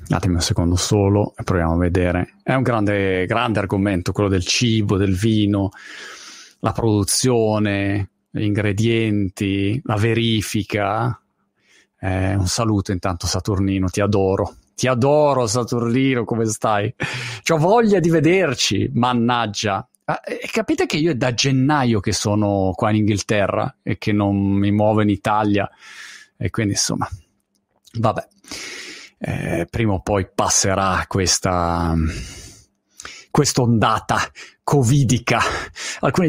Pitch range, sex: 100-135 Hz, male